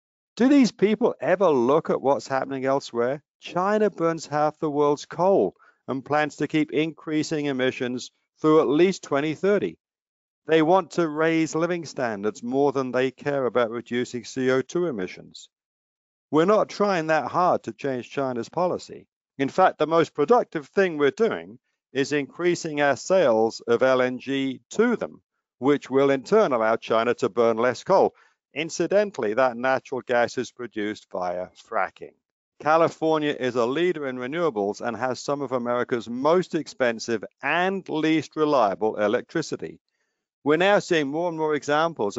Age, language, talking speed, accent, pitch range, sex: 50-69, English, 150 wpm, British, 125-160 Hz, male